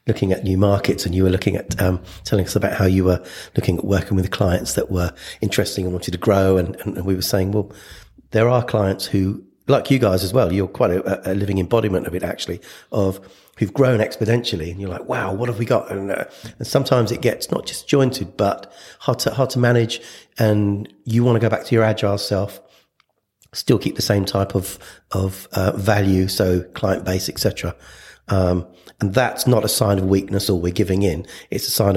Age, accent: 40-59, British